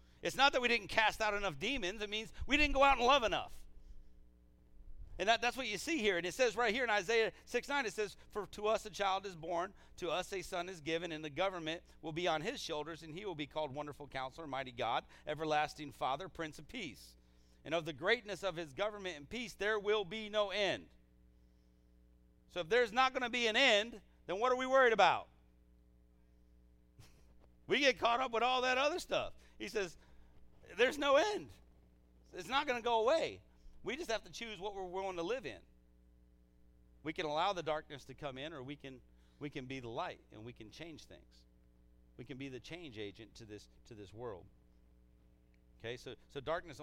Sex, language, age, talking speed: male, English, 40-59, 215 wpm